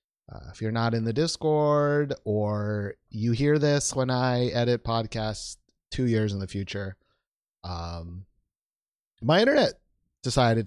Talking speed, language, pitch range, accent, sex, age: 135 wpm, English, 100-145 Hz, American, male, 30-49